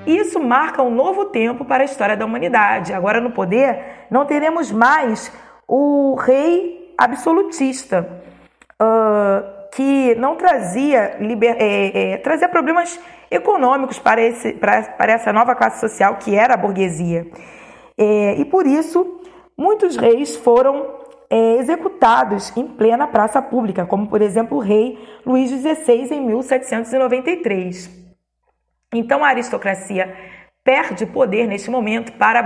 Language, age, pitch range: Portuguese, 20-39, 210-295 Hz